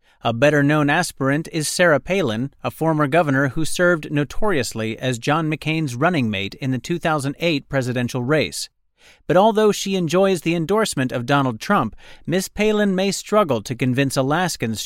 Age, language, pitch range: 40-59, English, 130-175 Hz